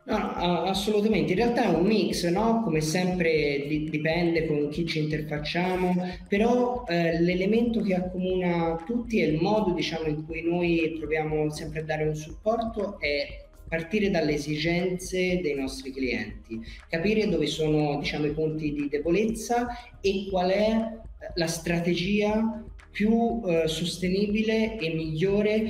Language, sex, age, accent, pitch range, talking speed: Italian, male, 30-49, native, 155-185 Hz, 140 wpm